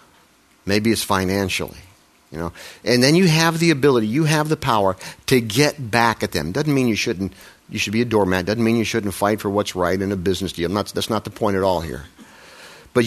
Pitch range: 90-115 Hz